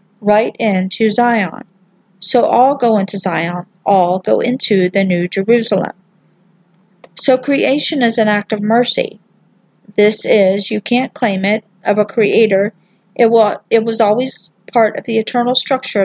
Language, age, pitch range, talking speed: English, 50-69, 190-235 Hz, 140 wpm